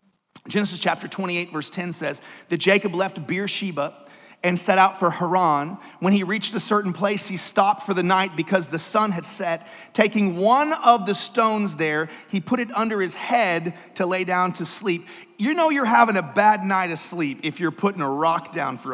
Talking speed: 205 wpm